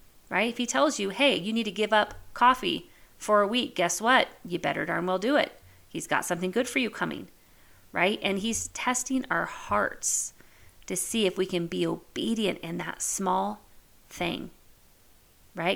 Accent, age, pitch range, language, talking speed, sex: American, 40-59, 165-220 Hz, English, 185 wpm, female